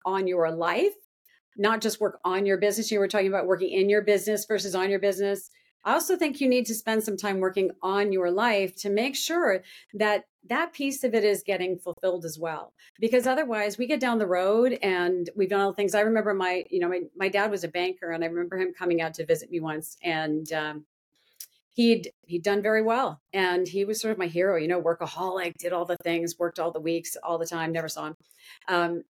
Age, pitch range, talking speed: 40-59, 175-210 Hz, 235 wpm